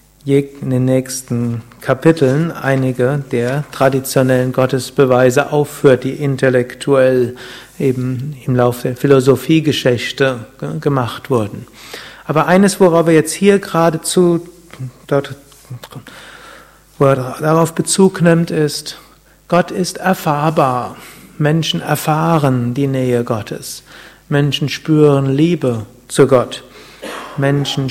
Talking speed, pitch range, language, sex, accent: 90 wpm, 130-155 Hz, German, male, German